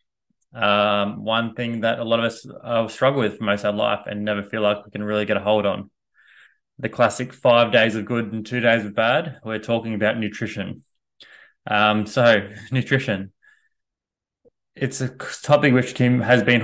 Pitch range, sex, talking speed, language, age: 100-120 Hz, male, 190 wpm, English, 20-39